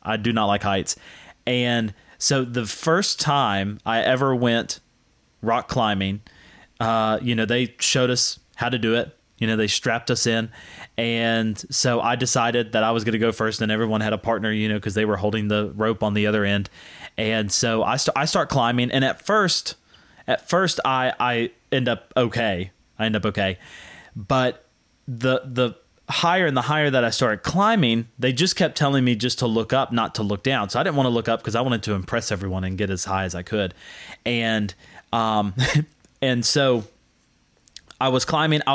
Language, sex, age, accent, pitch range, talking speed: English, male, 30-49, American, 110-130 Hz, 205 wpm